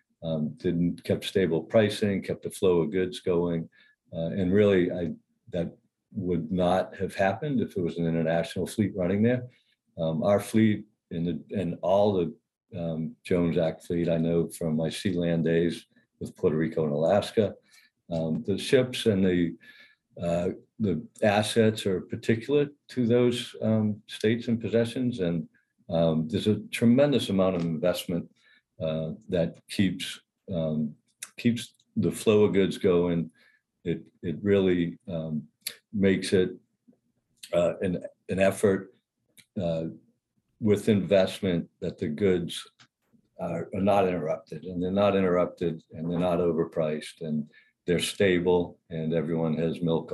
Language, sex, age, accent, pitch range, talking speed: English, male, 50-69, American, 80-105 Hz, 145 wpm